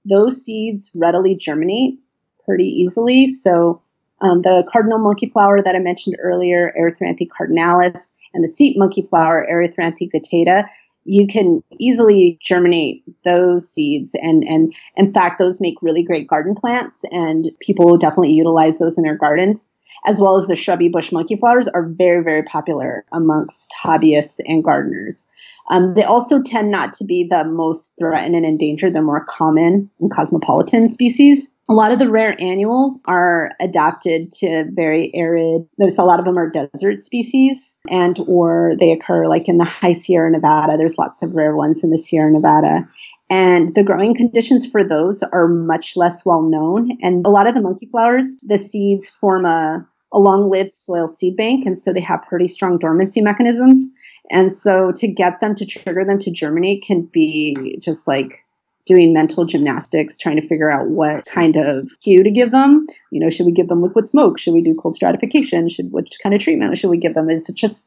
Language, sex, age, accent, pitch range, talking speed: English, female, 30-49, American, 165-210 Hz, 185 wpm